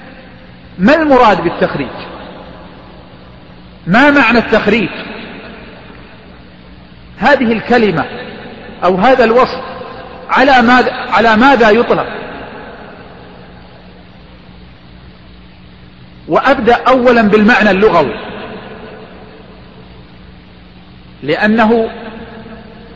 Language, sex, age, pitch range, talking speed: Arabic, male, 50-69, 170-250 Hz, 50 wpm